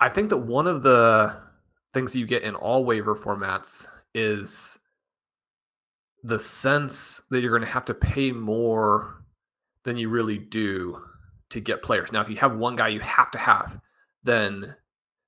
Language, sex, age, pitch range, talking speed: English, male, 30-49, 105-125 Hz, 170 wpm